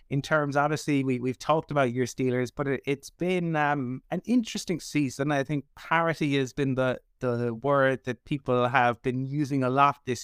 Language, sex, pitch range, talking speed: English, male, 120-145 Hz, 195 wpm